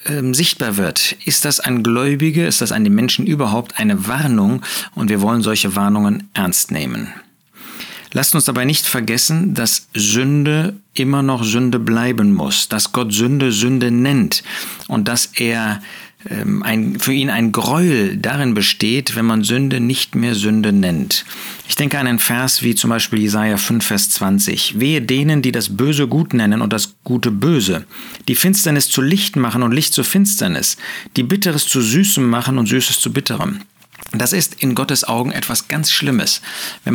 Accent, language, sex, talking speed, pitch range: German, German, male, 170 wpm, 115-160 Hz